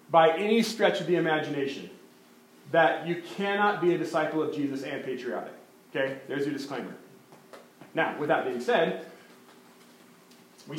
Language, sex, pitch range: English, male, 155-215 Hz